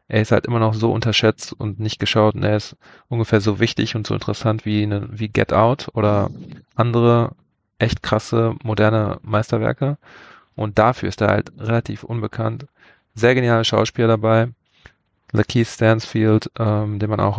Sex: male